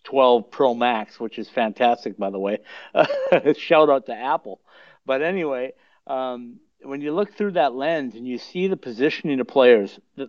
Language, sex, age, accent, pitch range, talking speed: English, male, 50-69, American, 120-175 Hz, 180 wpm